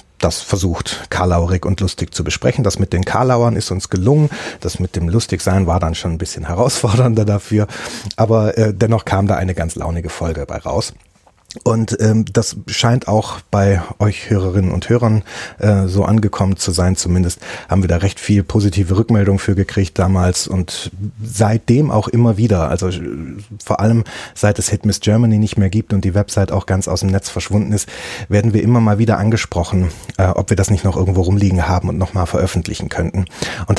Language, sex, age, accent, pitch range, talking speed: German, male, 30-49, German, 90-105 Hz, 190 wpm